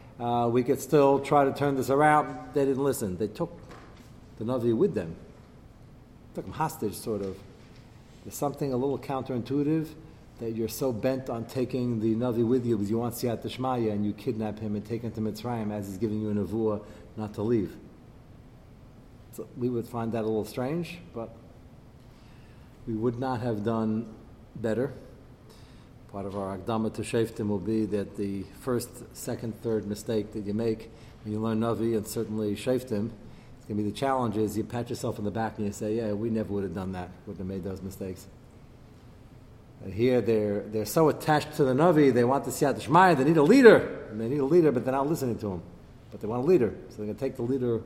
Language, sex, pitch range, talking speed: English, male, 110-125 Hz, 215 wpm